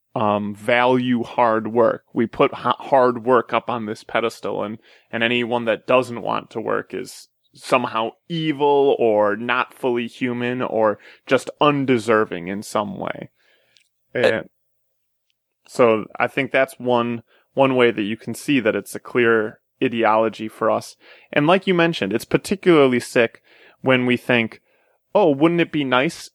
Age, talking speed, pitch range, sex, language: 20-39, 155 wpm, 110-130 Hz, male, English